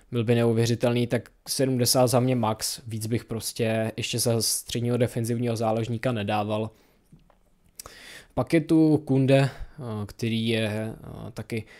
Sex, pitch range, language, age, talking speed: male, 115-135 Hz, Czech, 20-39, 120 wpm